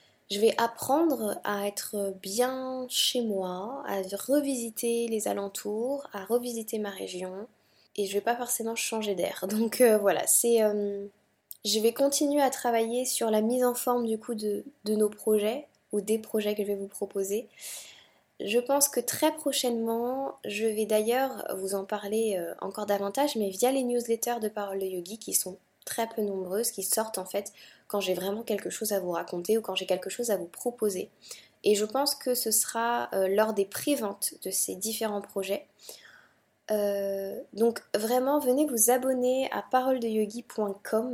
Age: 20-39